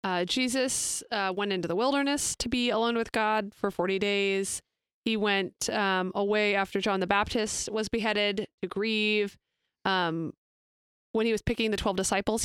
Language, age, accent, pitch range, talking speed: English, 20-39, American, 180-220 Hz, 170 wpm